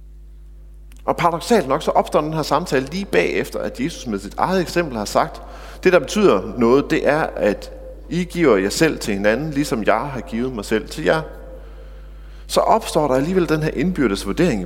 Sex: male